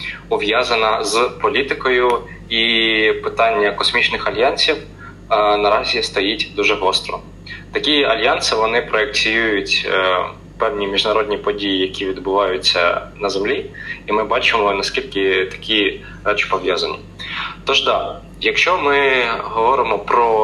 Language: Ukrainian